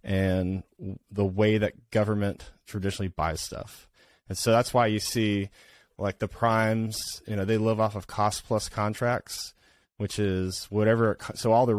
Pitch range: 95-110 Hz